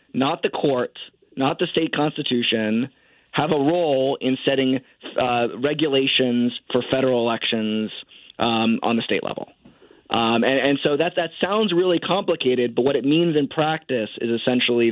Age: 20-39